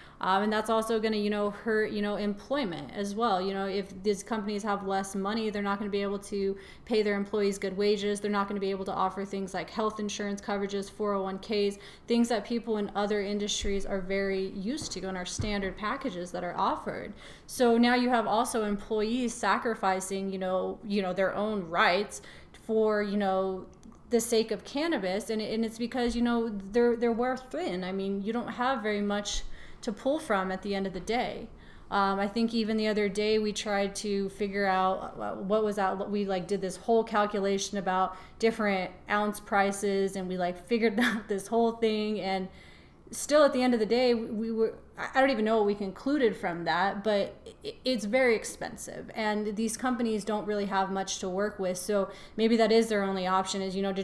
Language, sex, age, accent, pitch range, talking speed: English, female, 30-49, American, 195-220 Hz, 210 wpm